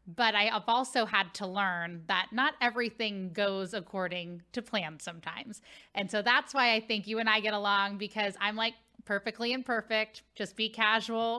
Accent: American